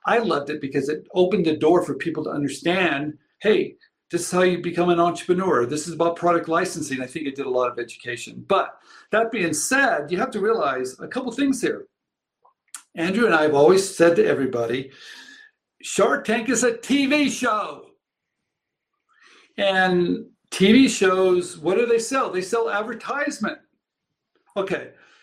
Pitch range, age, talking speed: 160-240 Hz, 60-79, 165 wpm